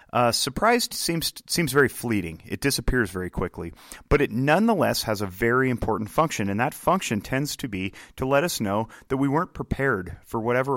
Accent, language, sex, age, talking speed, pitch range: American, English, male, 30-49, 190 wpm, 100-130 Hz